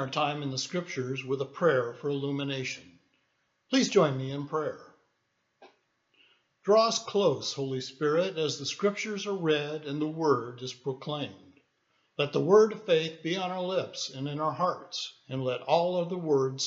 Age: 60-79